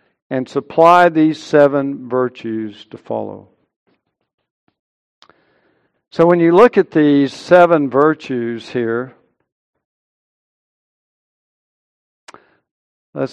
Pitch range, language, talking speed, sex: 130-165 Hz, English, 75 wpm, male